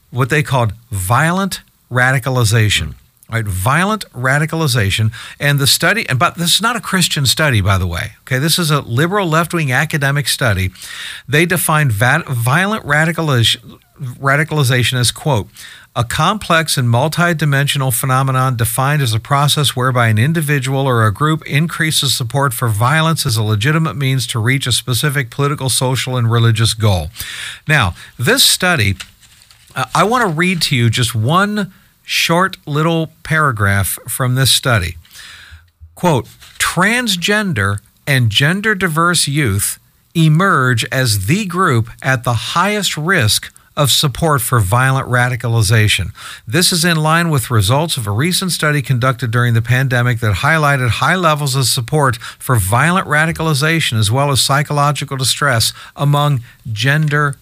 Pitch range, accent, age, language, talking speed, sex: 120-155 Hz, American, 50-69, English, 140 wpm, male